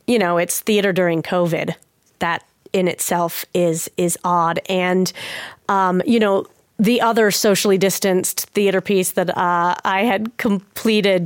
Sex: female